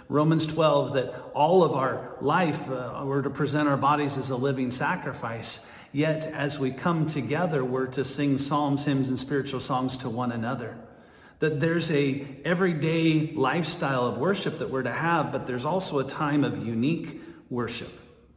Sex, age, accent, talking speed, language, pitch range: male, 50-69, American, 170 wpm, English, 130-150 Hz